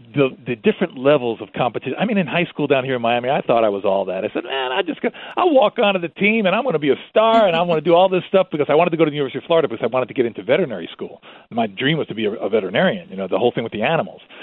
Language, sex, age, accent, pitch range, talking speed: English, male, 40-59, American, 150-215 Hz, 335 wpm